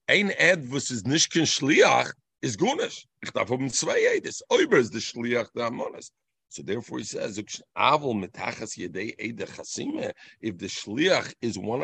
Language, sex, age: English, male, 50-69